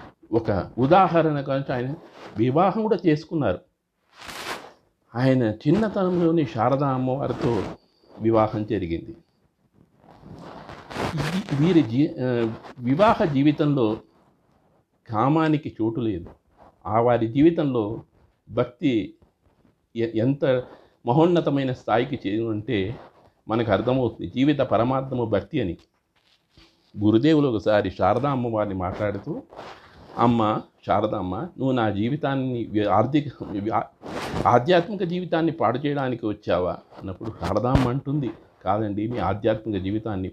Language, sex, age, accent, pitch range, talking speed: Telugu, male, 50-69, native, 105-140 Hz, 85 wpm